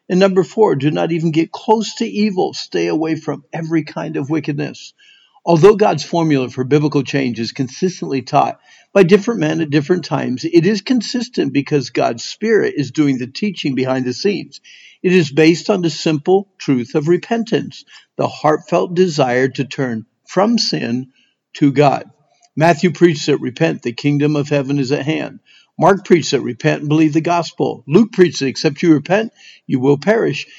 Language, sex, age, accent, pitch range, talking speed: English, male, 50-69, American, 140-185 Hz, 180 wpm